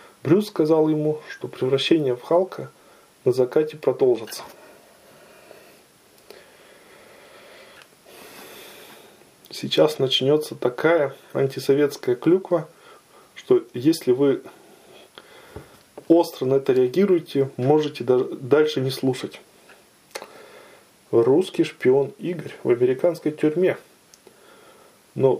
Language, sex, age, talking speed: Russian, male, 20-39, 80 wpm